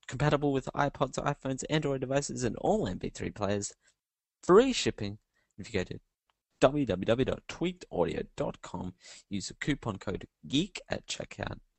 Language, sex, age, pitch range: English, male, 20-39, 100-135 Hz